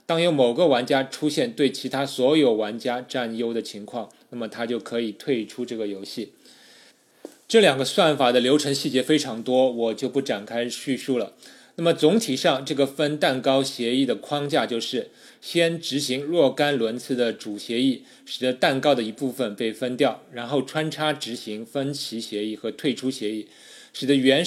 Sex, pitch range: male, 115-145 Hz